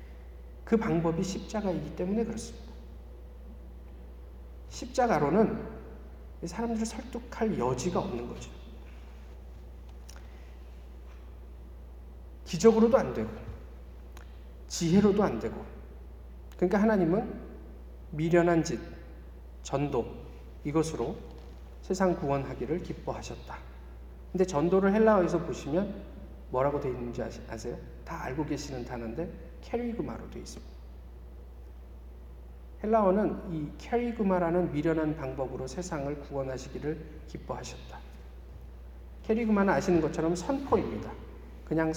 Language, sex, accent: Korean, male, native